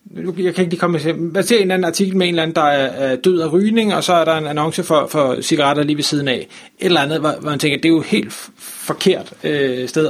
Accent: native